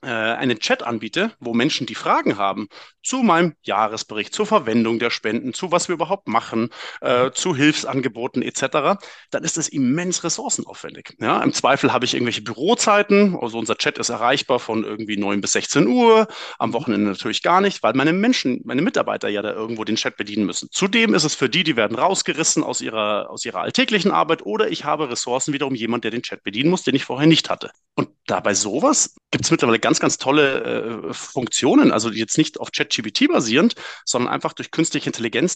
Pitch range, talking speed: 115-180 Hz, 195 wpm